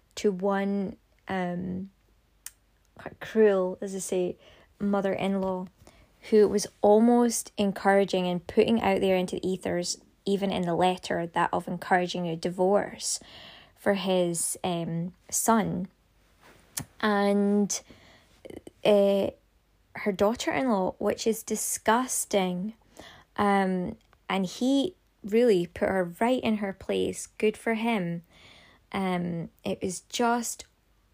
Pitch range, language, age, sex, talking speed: 185-225 Hz, English, 20-39, female, 120 wpm